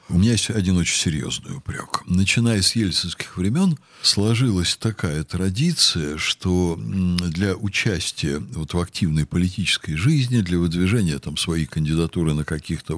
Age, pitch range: 60-79, 85-125 Hz